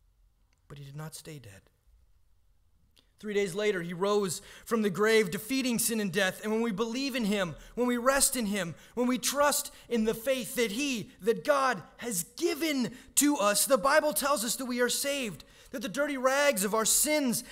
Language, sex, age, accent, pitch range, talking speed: English, male, 30-49, American, 155-260 Hz, 200 wpm